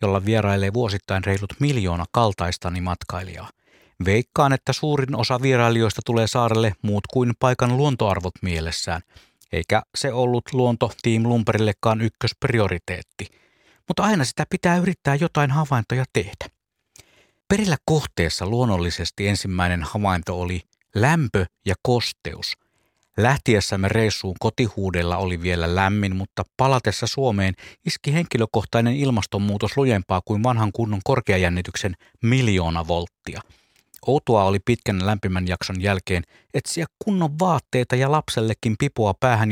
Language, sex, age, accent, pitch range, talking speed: Finnish, male, 50-69, native, 95-125 Hz, 110 wpm